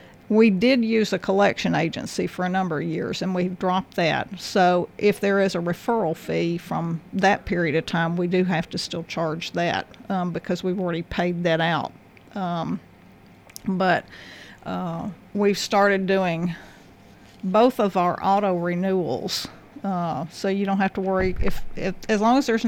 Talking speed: 170 wpm